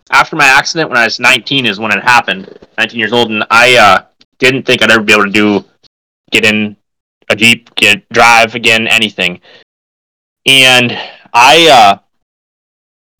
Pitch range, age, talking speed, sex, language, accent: 105-140 Hz, 20-39, 170 wpm, male, English, American